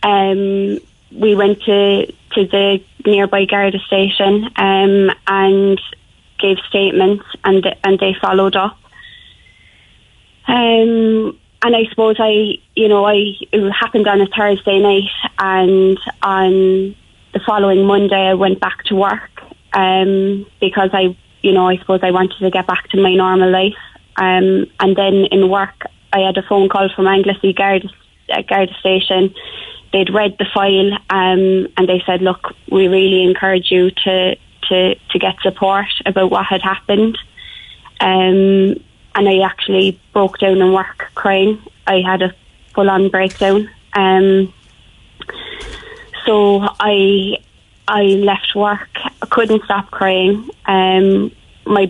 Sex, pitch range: female, 190-200 Hz